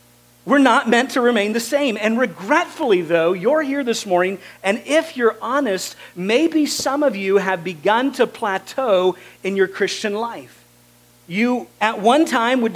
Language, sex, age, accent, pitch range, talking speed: English, male, 40-59, American, 190-245 Hz, 165 wpm